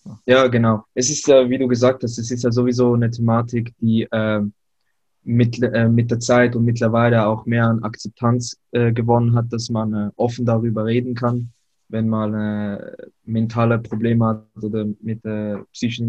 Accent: German